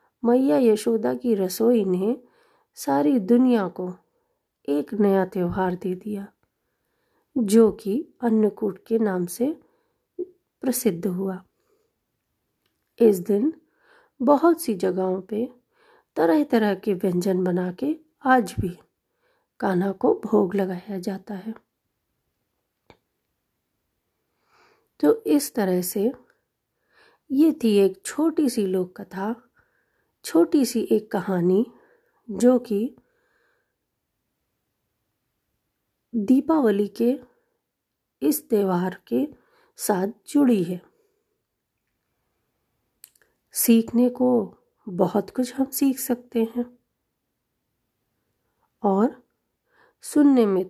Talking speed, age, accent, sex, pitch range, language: 90 wpm, 40-59, native, female, 200-300 Hz, Hindi